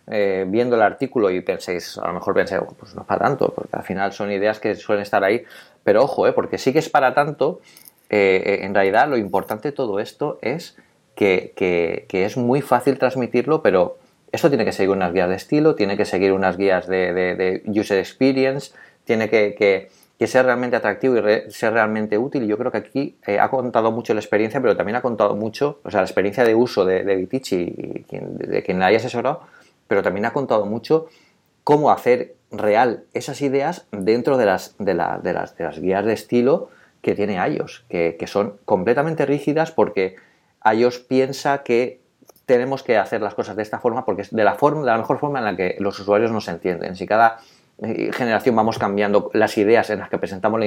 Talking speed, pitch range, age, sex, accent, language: 210 wpm, 100-135 Hz, 30-49, male, Spanish, Spanish